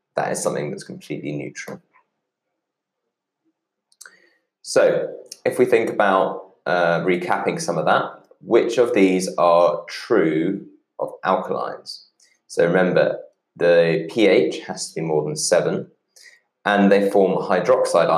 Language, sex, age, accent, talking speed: English, male, 20-39, British, 120 wpm